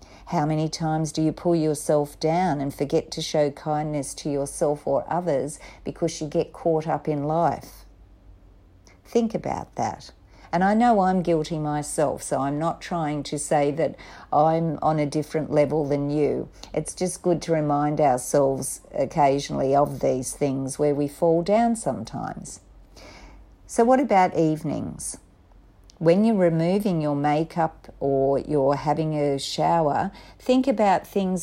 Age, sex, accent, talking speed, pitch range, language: 50-69, female, Australian, 150 wpm, 140-170 Hz, English